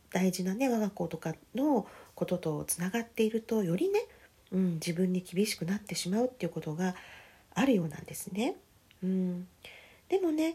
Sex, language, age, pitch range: female, Japanese, 40-59, 180-285 Hz